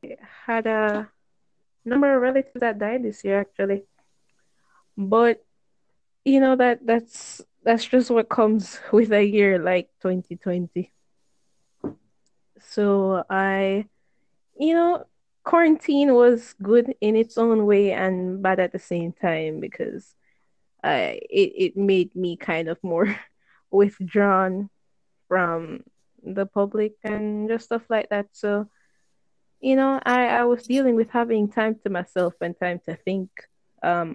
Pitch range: 180-230 Hz